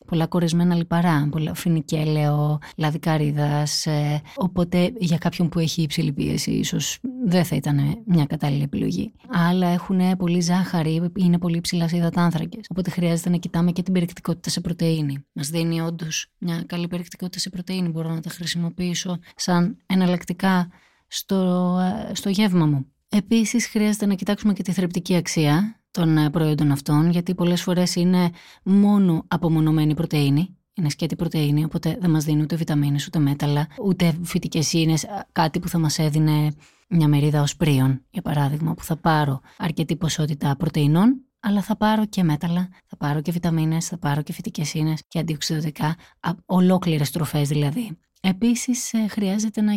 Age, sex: 20-39, female